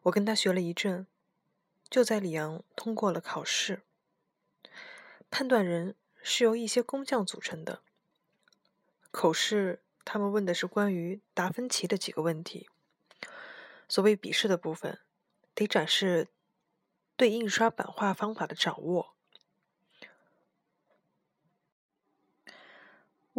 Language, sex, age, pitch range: Chinese, female, 20-39, 180-225 Hz